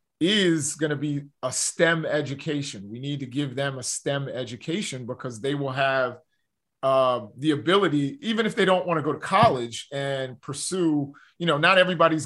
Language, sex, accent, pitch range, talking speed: English, male, American, 135-160 Hz, 180 wpm